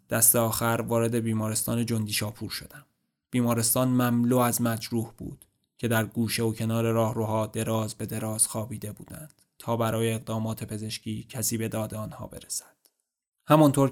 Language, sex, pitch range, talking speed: Persian, male, 110-125 Hz, 140 wpm